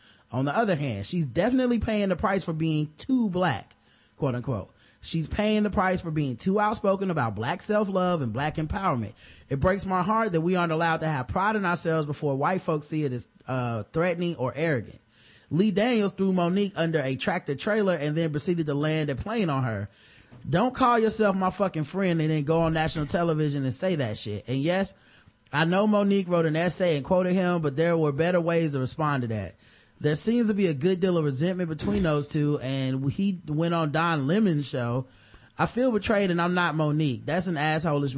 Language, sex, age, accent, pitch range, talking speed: English, male, 30-49, American, 130-180 Hz, 210 wpm